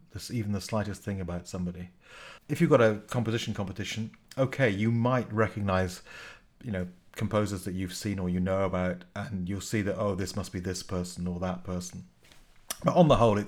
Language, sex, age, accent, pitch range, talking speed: English, male, 40-59, British, 95-115 Hz, 190 wpm